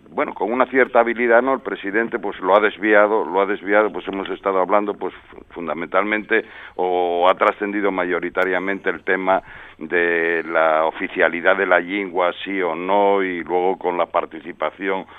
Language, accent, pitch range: Spanish, Spanish, 85-105 Hz